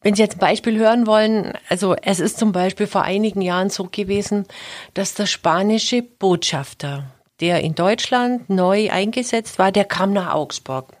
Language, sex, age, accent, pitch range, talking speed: German, female, 50-69, German, 180-250 Hz, 170 wpm